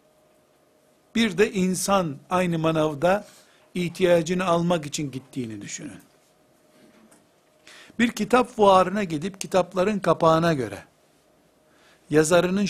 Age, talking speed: 60-79, 85 wpm